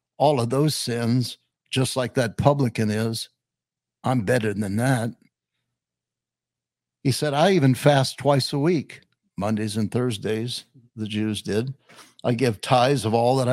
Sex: male